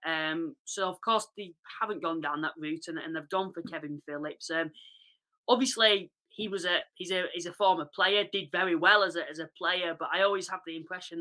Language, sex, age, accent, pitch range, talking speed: English, female, 20-39, British, 165-200 Hz, 225 wpm